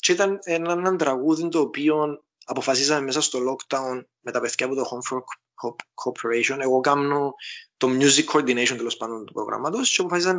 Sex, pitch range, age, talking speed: male, 120-160 Hz, 20-39, 170 wpm